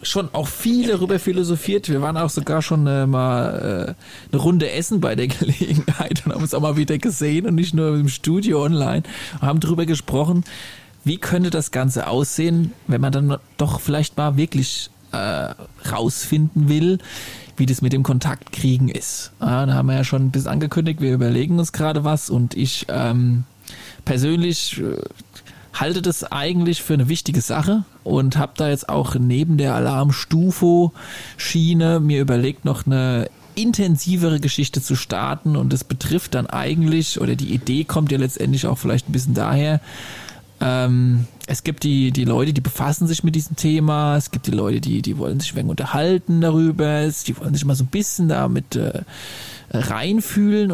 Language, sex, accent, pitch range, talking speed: German, male, German, 130-165 Hz, 175 wpm